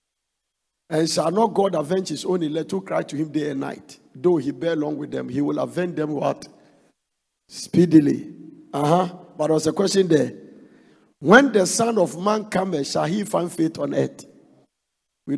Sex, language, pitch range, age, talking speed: male, English, 155-190 Hz, 50-69, 185 wpm